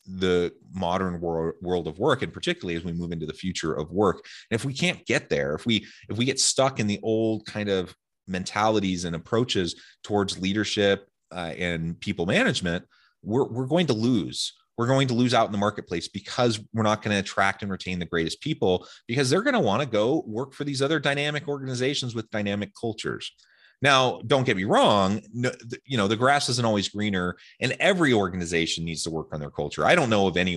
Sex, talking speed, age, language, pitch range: male, 210 wpm, 30-49, English, 90-120 Hz